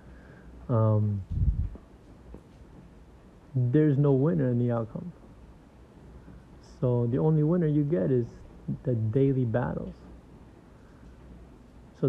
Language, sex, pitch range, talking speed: English, male, 105-125 Hz, 90 wpm